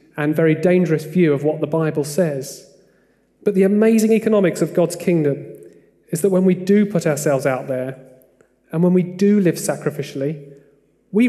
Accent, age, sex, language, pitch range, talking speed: British, 30-49, male, English, 150-195 Hz, 170 wpm